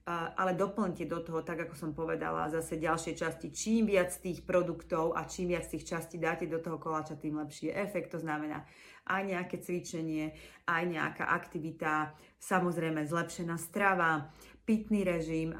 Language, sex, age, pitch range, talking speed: Slovak, female, 30-49, 155-170 Hz, 155 wpm